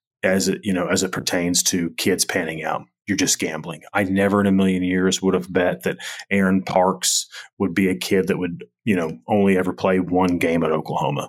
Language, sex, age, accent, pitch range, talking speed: English, male, 30-49, American, 85-95 Hz, 220 wpm